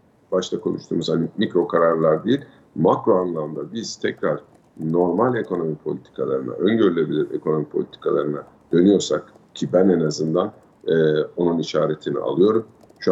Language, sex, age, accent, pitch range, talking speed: Turkish, male, 50-69, native, 80-95 Hz, 120 wpm